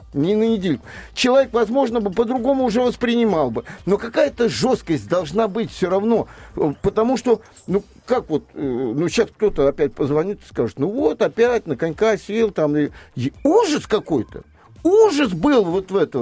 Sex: male